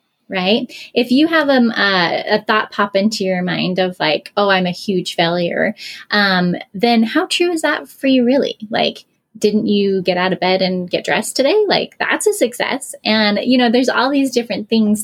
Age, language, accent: 10-29, English, American